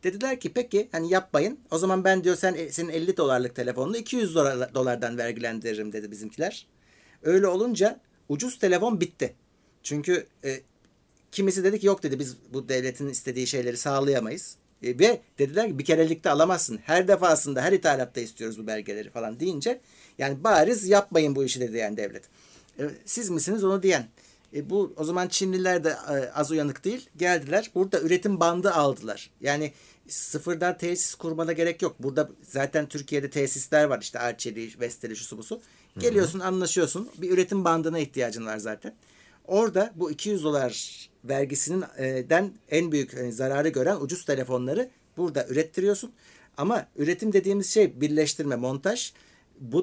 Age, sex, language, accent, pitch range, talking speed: 60-79, male, Turkish, native, 135-190 Hz, 150 wpm